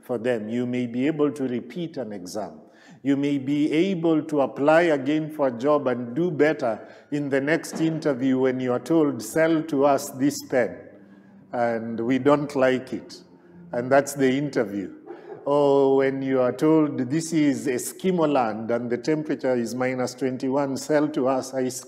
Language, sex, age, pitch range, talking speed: English, male, 50-69, 125-150 Hz, 175 wpm